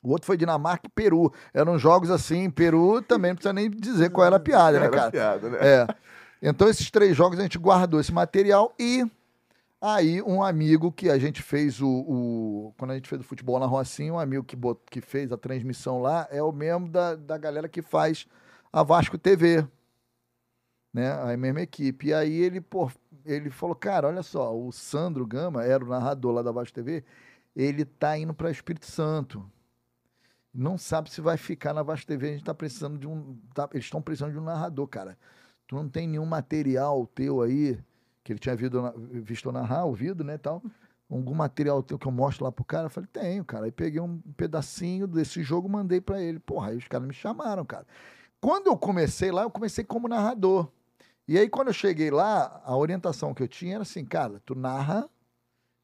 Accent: Brazilian